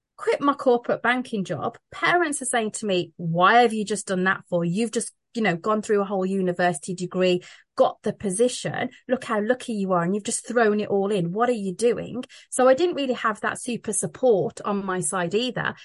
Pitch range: 190-255 Hz